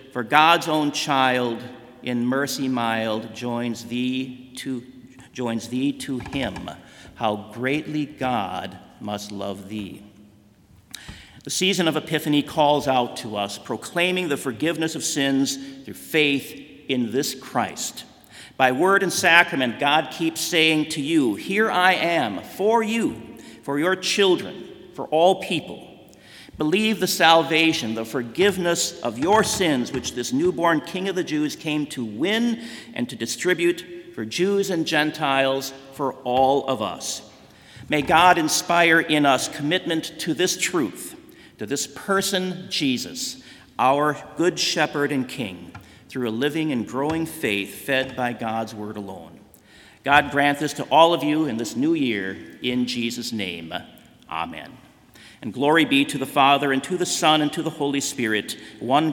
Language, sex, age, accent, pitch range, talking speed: English, male, 50-69, American, 125-170 Hz, 145 wpm